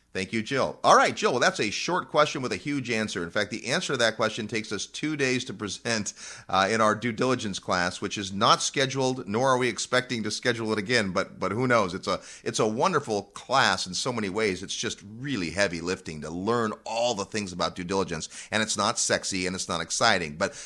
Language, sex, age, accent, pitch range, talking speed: English, male, 30-49, American, 95-125 Hz, 240 wpm